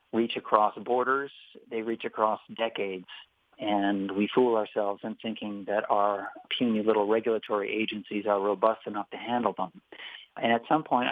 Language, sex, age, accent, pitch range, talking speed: English, male, 50-69, American, 105-125 Hz, 155 wpm